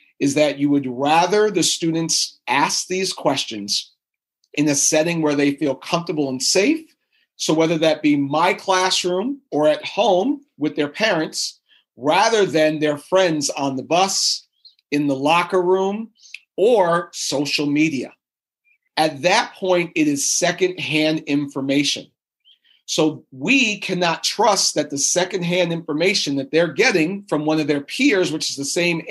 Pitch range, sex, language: 150-195 Hz, male, English